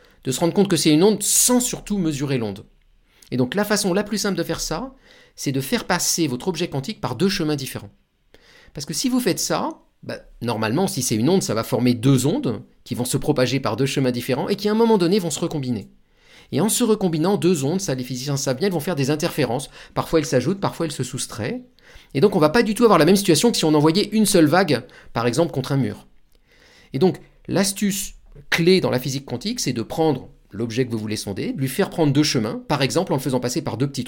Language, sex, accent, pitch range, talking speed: French, male, French, 130-185 Hz, 250 wpm